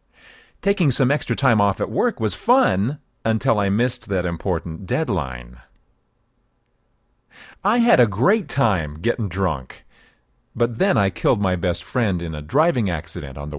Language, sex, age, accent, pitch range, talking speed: English, male, 40-59, American, 90-130 Hz, 155 wpm